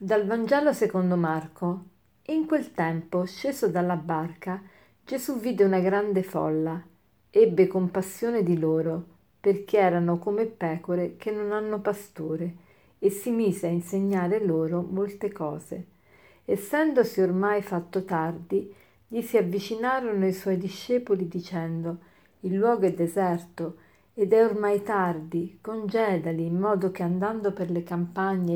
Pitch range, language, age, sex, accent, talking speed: 175-205 Hz, Italian, 50-69, female, native, 130 wpm